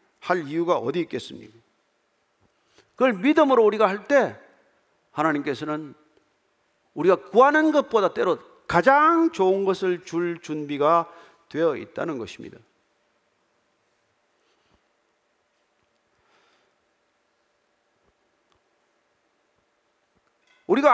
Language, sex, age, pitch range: Korean, male, 40-59, 155-235 Hz